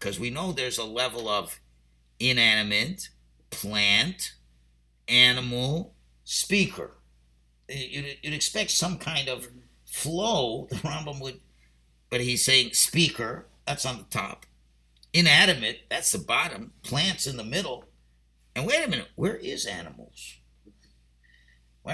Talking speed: 125 wpm